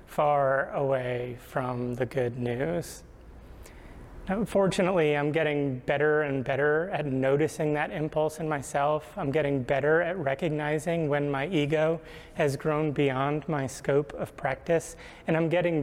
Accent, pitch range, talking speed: American, 125-150 Hz, 135 wpm